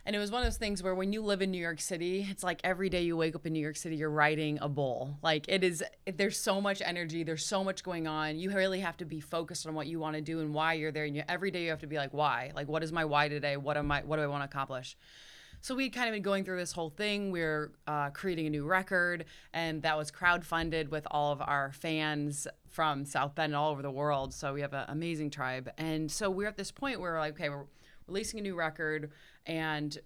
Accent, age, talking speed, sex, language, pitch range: American, 20-39, 280 wpm, female, English, 150-185 Hz